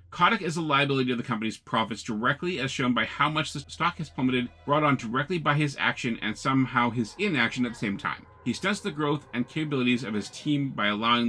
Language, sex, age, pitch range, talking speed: English, male, 30-49, 115-150 Hz, 230 wpm